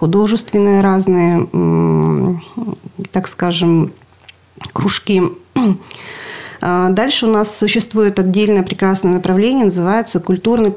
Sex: female